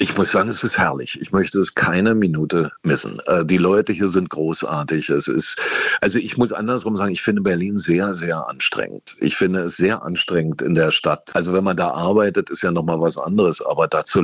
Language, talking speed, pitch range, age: German, 210 wpm, 85-110 Hz, 50-69